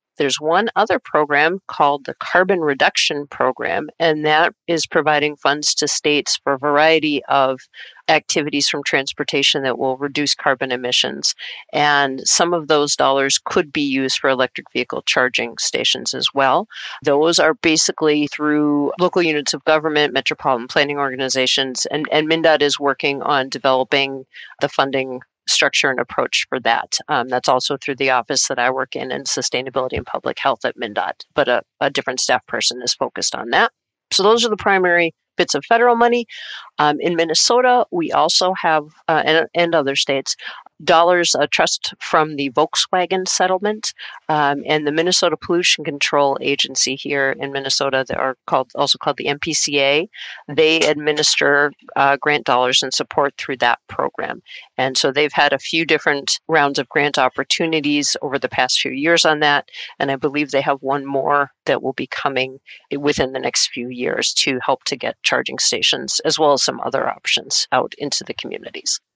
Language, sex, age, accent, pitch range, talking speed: English, female, 40-59, American, 140-160 Hz, 175 wpm